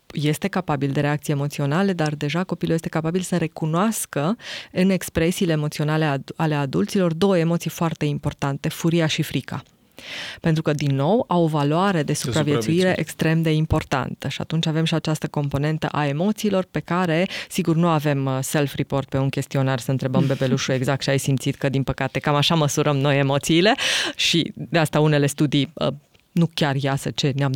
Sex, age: female, 20-39